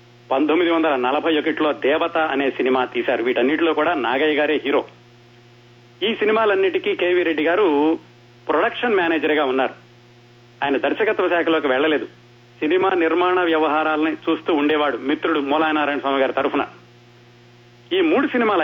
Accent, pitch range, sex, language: native, 120-175 Hz, male, Telugu